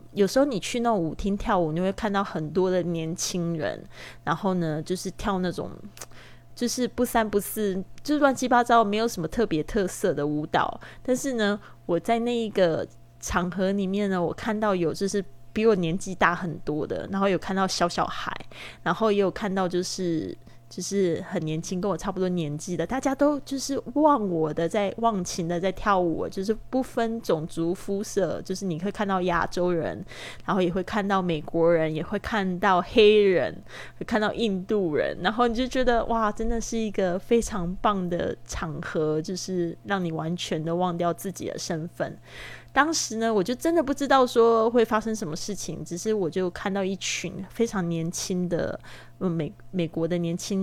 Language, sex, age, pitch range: Chinese, female, 20-39, 175-230 Hz